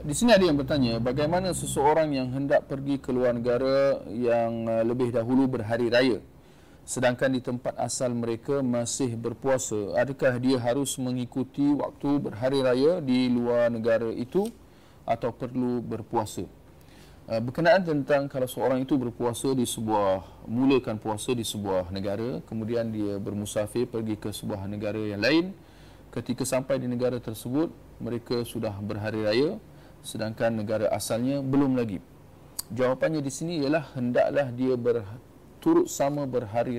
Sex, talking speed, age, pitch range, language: male, 140 wpm, 40-59, 115-140 Hz, Malay